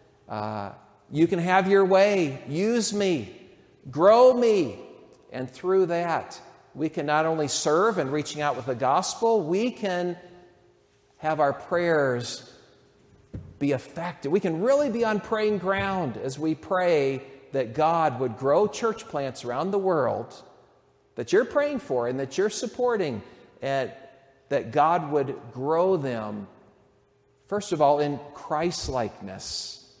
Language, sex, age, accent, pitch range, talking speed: English, male, 50-69, American, 120-185 Hz, 140 wpm